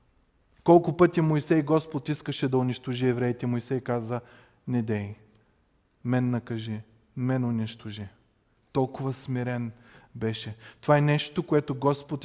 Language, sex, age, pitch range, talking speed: Bulgarian, male, 20-39, 120-155 Hz, 120 wpm